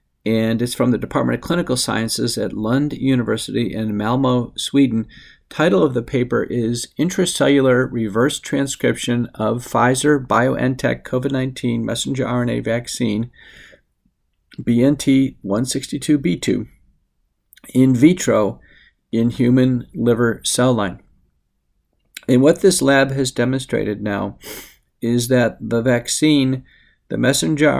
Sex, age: male, 50-69